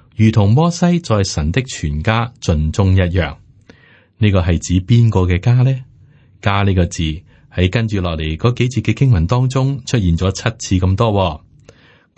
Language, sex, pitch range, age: Chinese, male, 90-125 Hz, 30-49